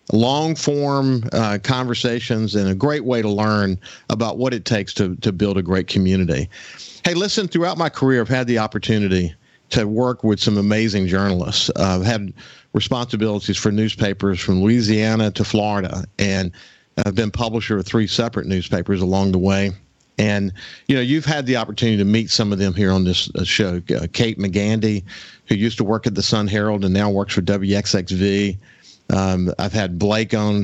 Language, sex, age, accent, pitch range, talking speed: English, male, 50-69, American, 95-115 Hz, 175 wpm